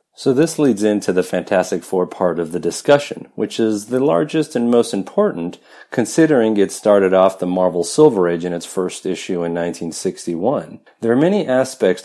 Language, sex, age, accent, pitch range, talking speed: English, male, 40-59, American, 95-115 Hz, 180 wpm